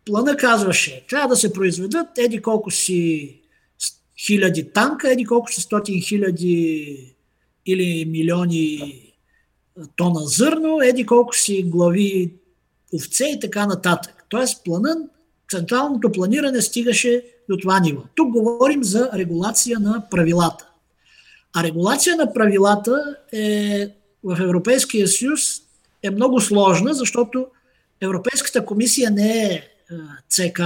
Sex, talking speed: male, 115 wpm